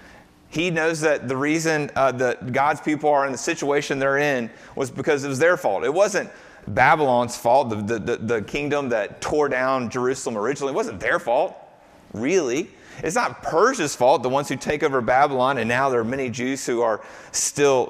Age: 30-49